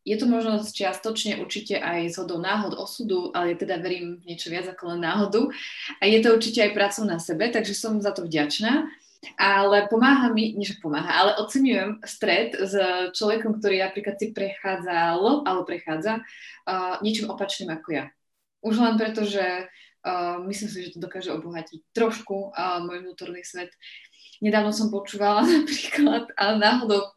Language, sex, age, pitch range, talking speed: Slovak, female, 20-39, 180-225 Hz, 165 wpm